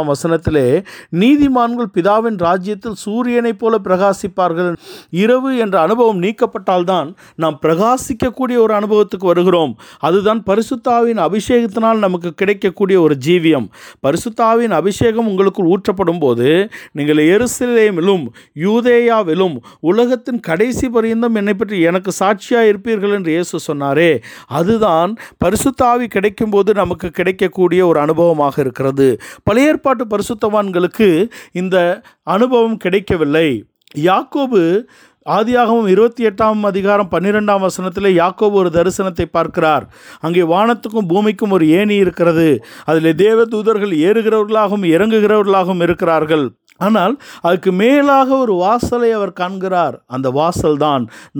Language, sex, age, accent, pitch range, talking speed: Tamil, male, 50-69, native, 165-225 Hz, 75 wpm